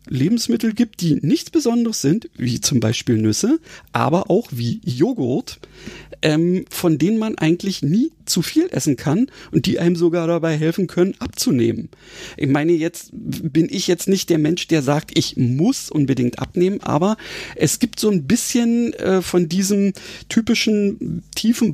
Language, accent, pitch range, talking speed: German, German, 145-200 Hz, 155 wpm